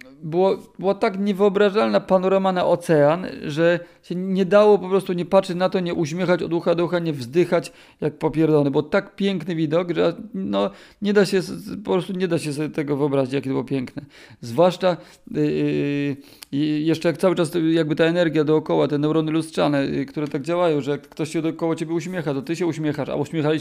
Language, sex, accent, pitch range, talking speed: Polish, male, native, 140-175 Hz, 195 wpm